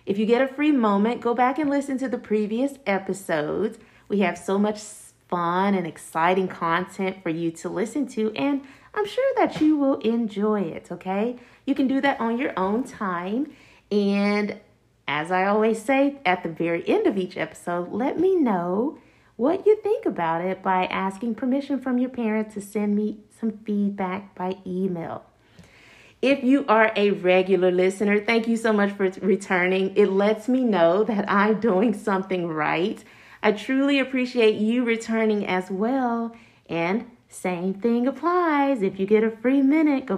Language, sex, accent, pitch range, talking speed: English, female, American, 190-250 Hz, 175 wpm